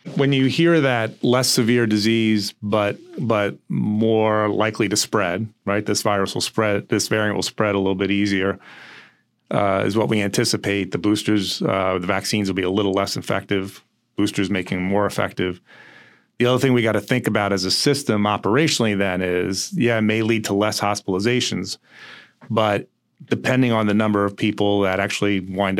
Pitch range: 95-110 Hz